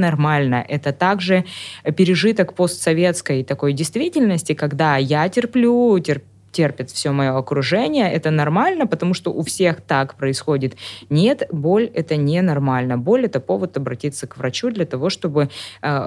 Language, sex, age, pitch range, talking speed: Russian, female, 20-39, 135-170 Hz, 135 wpm